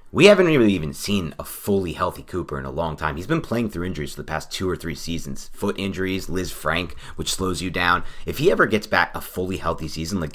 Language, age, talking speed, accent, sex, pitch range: English, 30-49, 240 wpm, American, male, 75-100 Hz